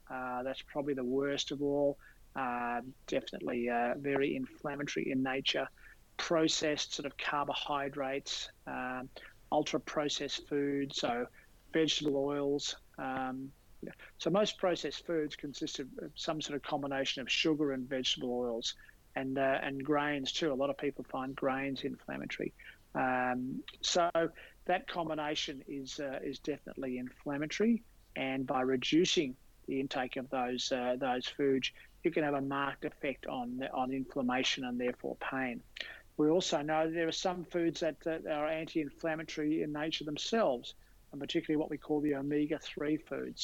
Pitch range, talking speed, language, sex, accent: 130-155 Hz, 150 wpm, English, male, Australian